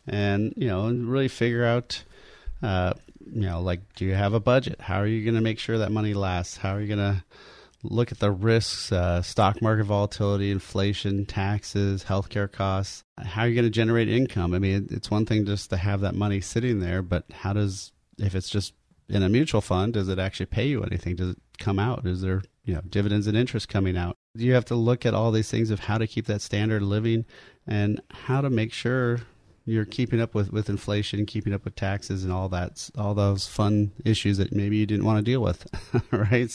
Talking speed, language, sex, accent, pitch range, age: 225 wpm, English, male, American, 95-115 Hz, 30-49